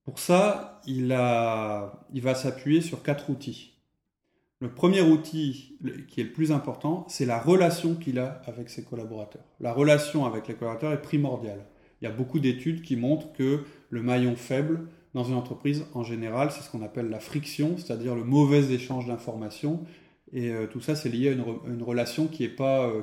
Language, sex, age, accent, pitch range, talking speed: French, male, 30-49, French, 115-150 Hz, 190 wpm